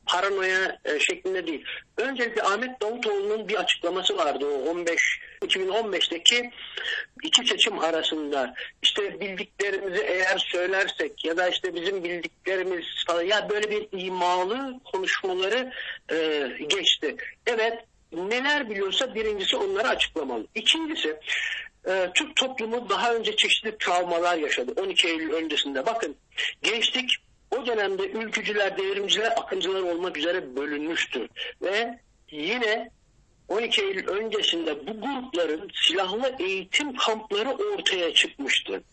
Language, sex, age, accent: Turkish, male, 60-79, native